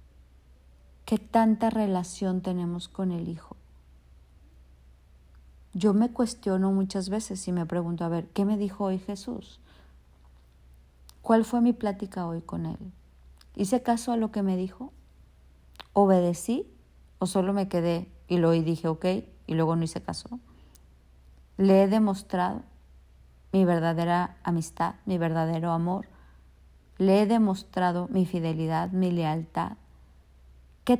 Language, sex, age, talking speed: Spanish, female, 50-69, 130 wpm